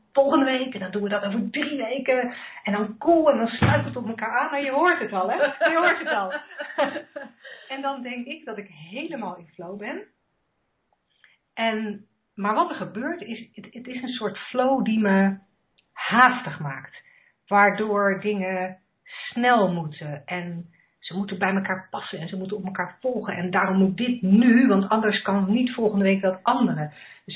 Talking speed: 190 wpm